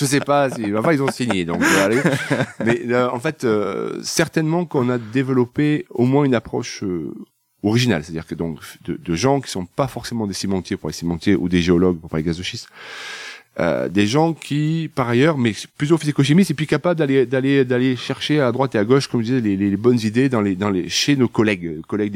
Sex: male